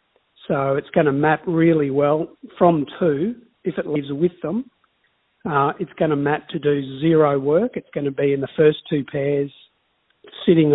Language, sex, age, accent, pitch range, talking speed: English, male, 50-69, Australian, 145-180 Hz, 185 wpm